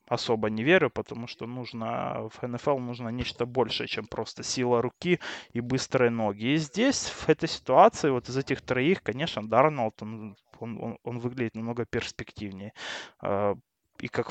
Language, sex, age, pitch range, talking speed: Russian, male, 20-39, 120-160 Hz, 150 wpm